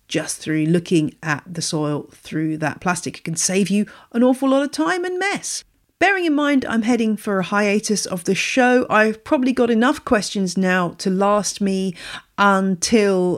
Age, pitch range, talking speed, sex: 40-59, 165-220 Hz, 185 wpm, female